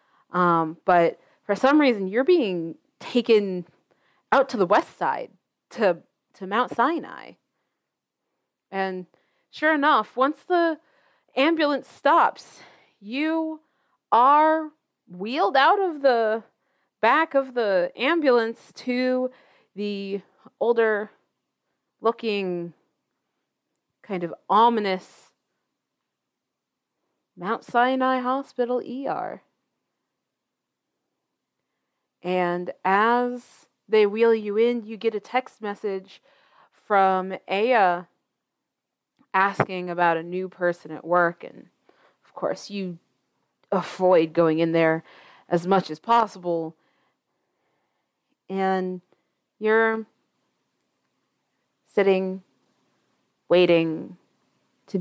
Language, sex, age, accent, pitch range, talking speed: English, female, 30-49, American, 180-250 Hz, 90 wpm